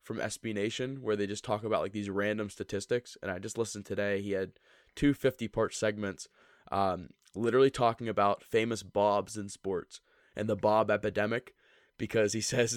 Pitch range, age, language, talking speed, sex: 100-115 Hz, 20-39, English, 180 wpm, male